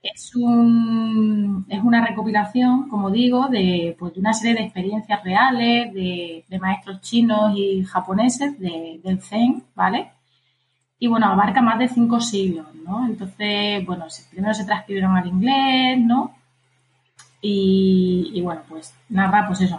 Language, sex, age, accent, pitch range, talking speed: Spanish, female, 20-39, Spanish, 175-225 Hz, 145 wpm